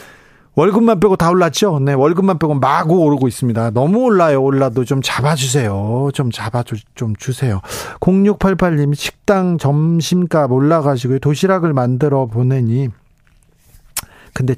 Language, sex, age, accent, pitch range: Korean, male, 40-59, native, 135-180 Hz